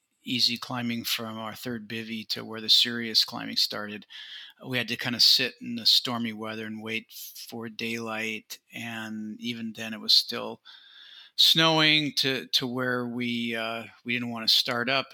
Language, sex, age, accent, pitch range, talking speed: English, male, 50-69, American, 115-130 Hz, 175 wpm